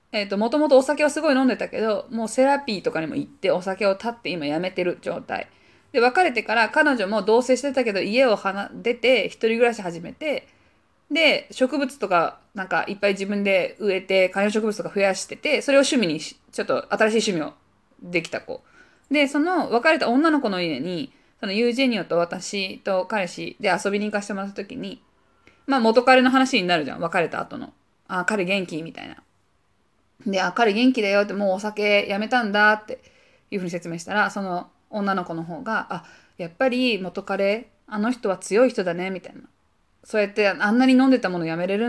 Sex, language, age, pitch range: female, Japanese, 20-39, 195-255 Hz